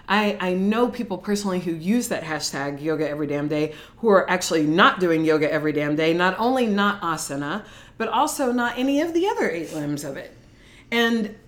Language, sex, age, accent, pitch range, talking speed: English, female, 40-59, American, 155-200 Hz, 200 wpm